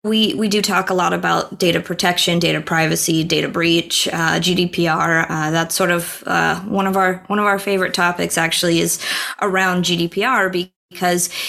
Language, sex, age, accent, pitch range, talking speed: English, female, 20-39, American, 175-205 Hz, 170 wpm